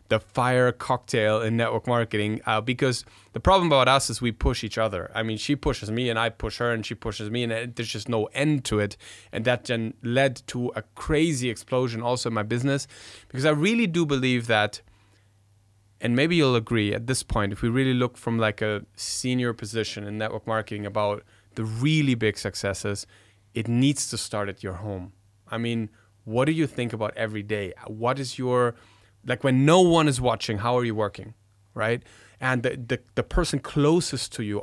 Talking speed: 205 wpm